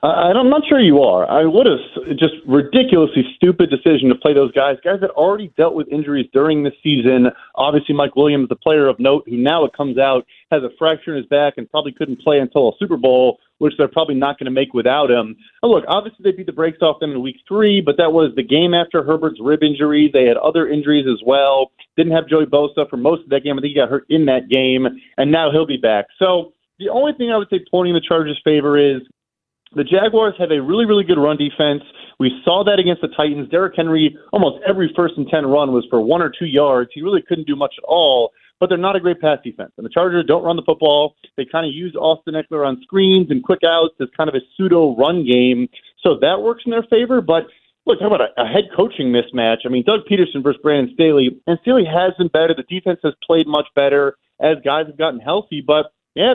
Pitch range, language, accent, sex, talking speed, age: 140-180 Hz, English, American, male, 245 wpm, 30-49